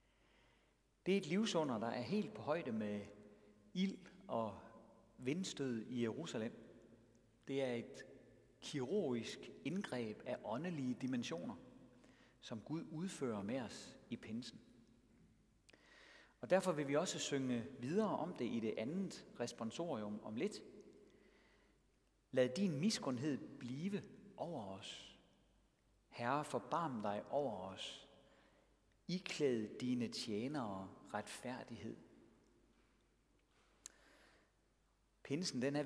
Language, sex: Danish, male